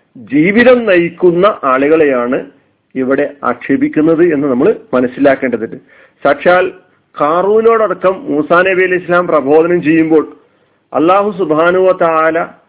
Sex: male